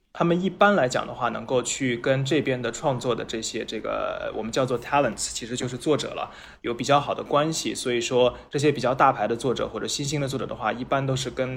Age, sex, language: 20-39, male, Chinese